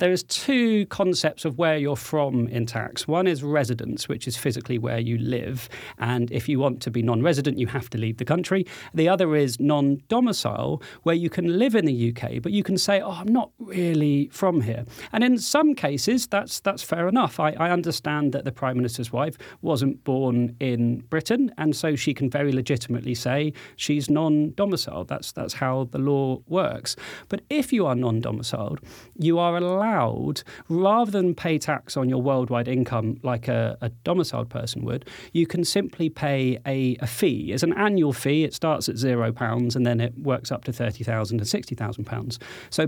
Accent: British